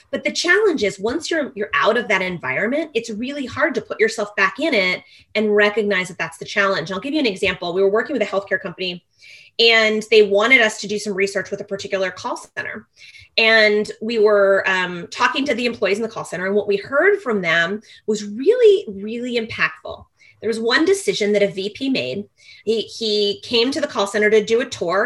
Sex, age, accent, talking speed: female, 20-39, American, 220 wpm